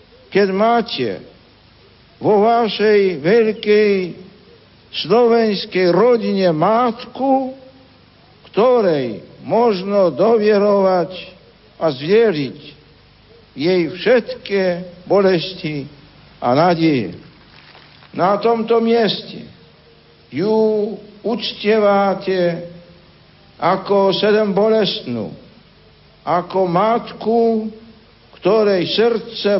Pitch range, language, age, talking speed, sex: 170-215 Hz, Slovak, 60-79, 60 wpm, male